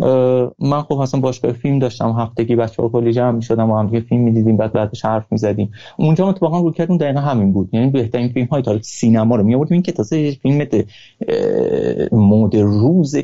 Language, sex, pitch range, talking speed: Persian, male, 115-160 Hz, 195 wpm